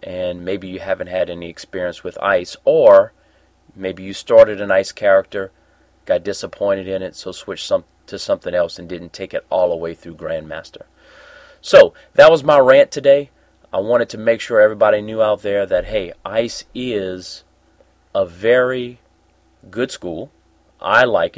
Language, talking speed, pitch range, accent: English, 165 wpm, 90-135 Hz, American